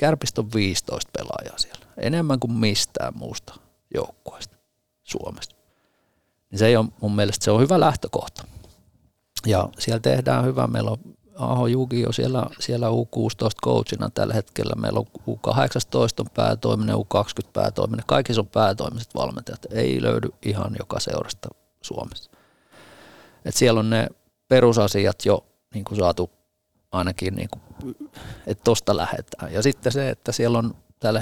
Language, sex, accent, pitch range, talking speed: Finnish, male, native, 95-120 Hz, 135 wpm